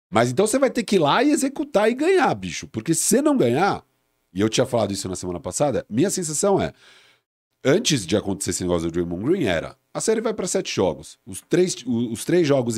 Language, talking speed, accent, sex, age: Portuguese, 230 wpm, Brazilian, male, 40-59